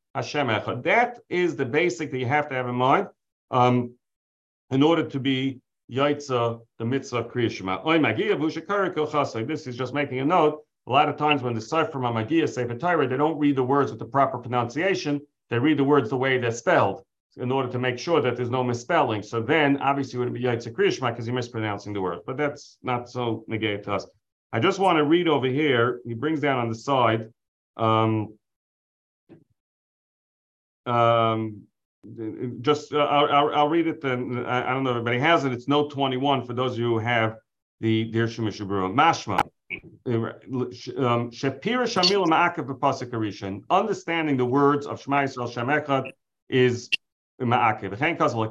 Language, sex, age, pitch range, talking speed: English, male, 40-59, 115-150 Hz, 180 wpm